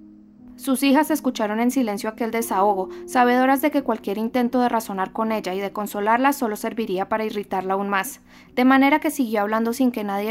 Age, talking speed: 20-39, 190 wpm